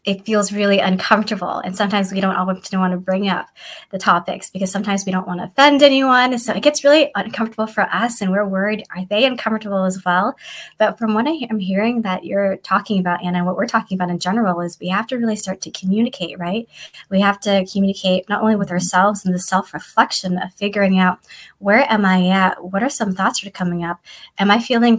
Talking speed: 220 wpm